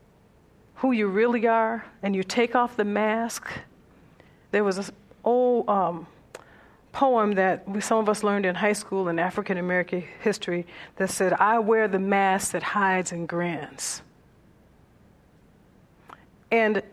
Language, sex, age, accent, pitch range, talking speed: English, female, 50-69, American, 180-215 Hz, 140 wpm